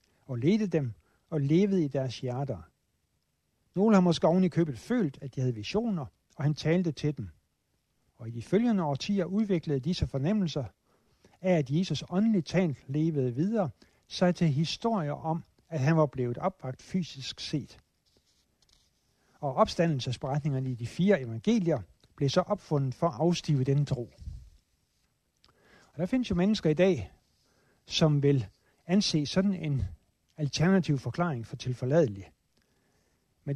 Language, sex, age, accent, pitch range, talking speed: Danish, male, 60-79, native, 130-180 Hz, 145 wpm